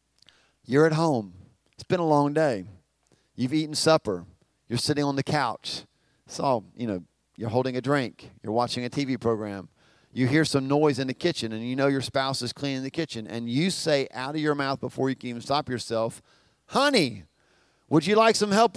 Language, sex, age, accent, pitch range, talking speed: English, male, 40-59, American, 120-190 Hz, 205 wpm